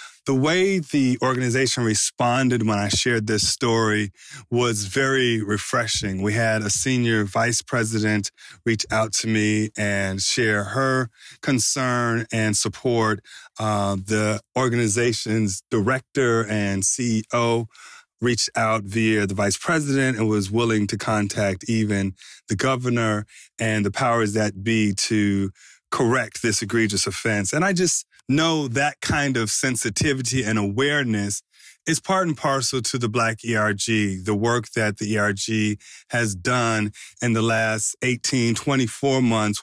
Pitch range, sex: 105-125 Hz, male